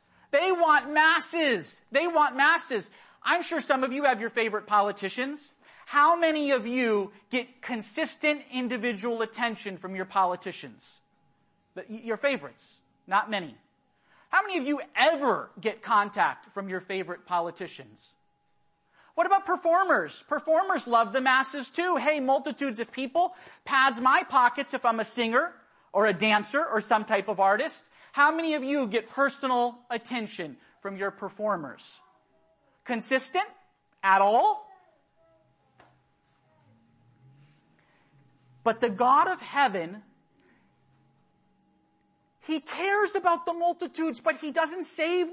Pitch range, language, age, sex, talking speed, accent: 220-310 Hz, English, 40-59, male, 125 wpm, American